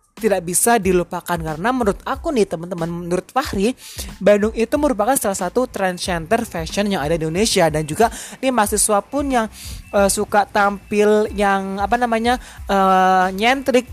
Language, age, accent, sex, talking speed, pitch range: Indonesian, 20-39, native, male, 155 wpm, 185-240 Hz